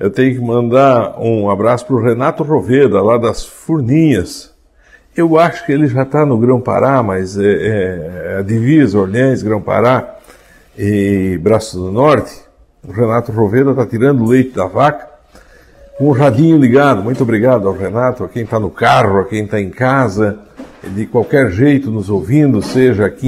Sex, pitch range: male, 105-145 Hz